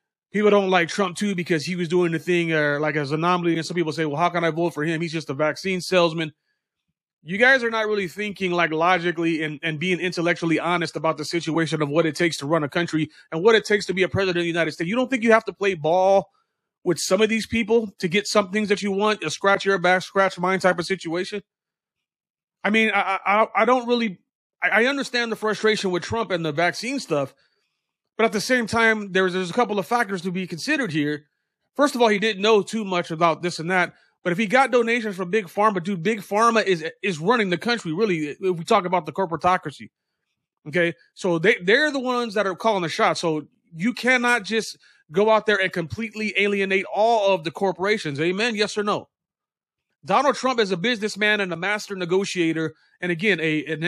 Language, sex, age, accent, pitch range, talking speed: English, male, 30-49, American, 170-215 Hz, 230 wpm